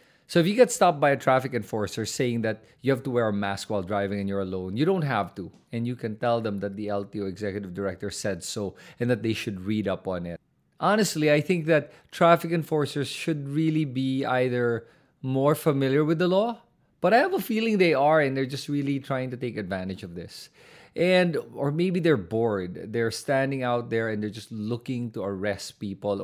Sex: male